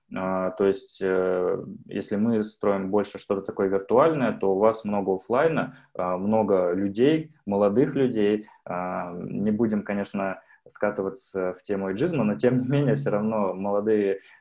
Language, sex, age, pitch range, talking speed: Russian, male, 20-39, 95-110 Hz, 135 wpm